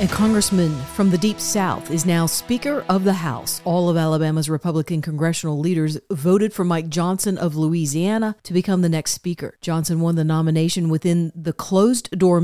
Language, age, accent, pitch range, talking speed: English, 40-59, American, 160-185 Hz, 175 wpm